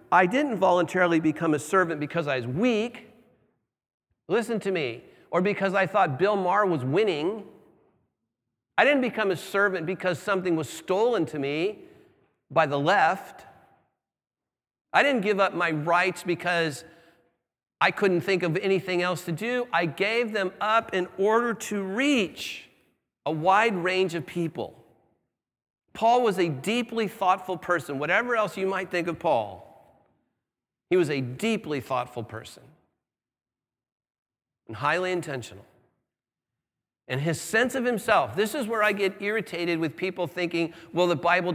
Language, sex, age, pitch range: English, male, 50-69, 170-225 Hz